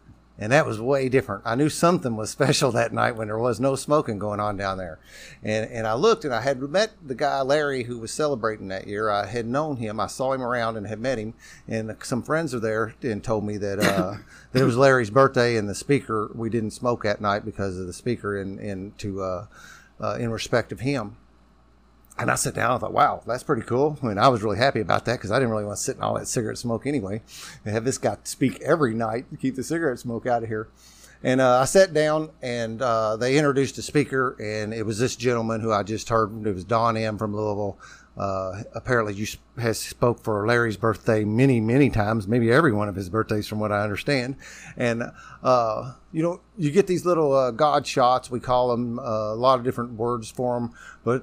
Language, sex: English, male